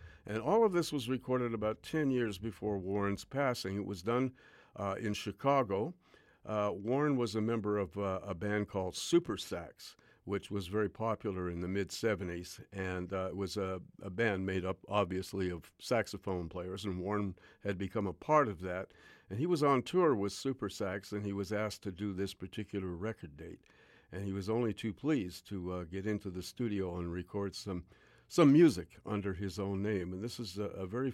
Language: English